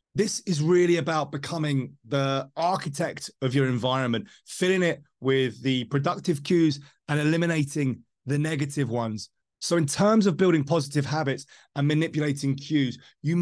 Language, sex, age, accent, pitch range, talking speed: English, male, 20-39, British, 140-170 Hz, 145 wpm